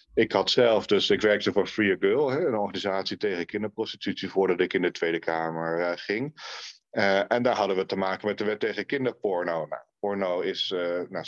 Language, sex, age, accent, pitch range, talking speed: Dutch, male, 40-59, Dutch, 95-110 Hz, 185 wpm